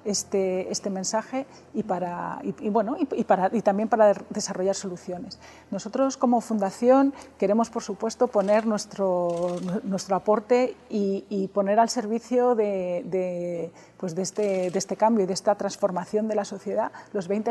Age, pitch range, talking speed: 40-59, 190-225 Hz, 125 wpm